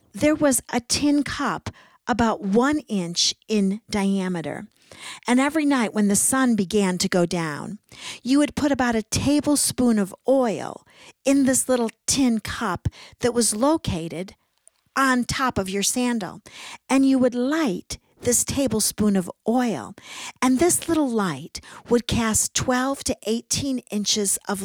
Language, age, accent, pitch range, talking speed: English, 50-69, American, 200-255 Hz, 145 wpm